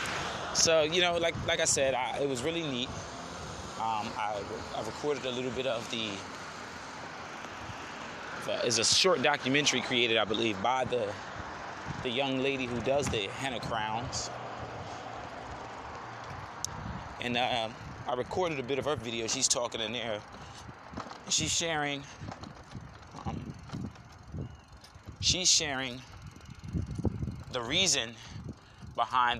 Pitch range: 110-135 Hz